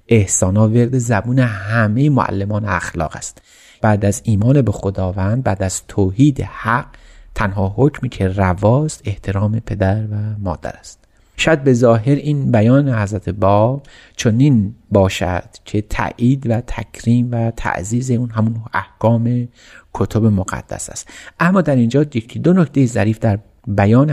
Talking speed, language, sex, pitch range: 135 wpm, Persian, male, 100-135 Hz